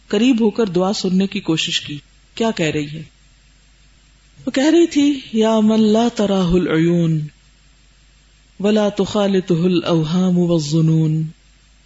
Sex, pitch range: female, 165-205 Hz